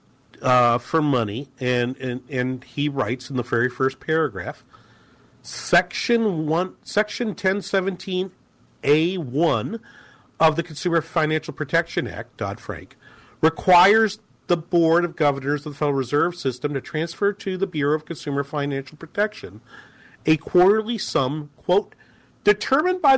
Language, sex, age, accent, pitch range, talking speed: English, male, 40-59, American, 140-210 Hz, 135 wpm